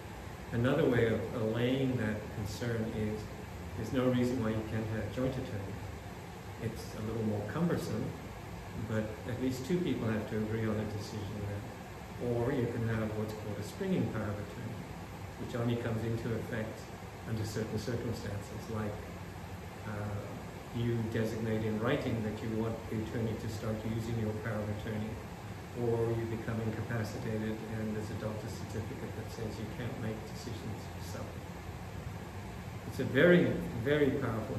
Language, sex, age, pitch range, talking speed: English, male, 40-59, 105-120 Hz, 155 wpm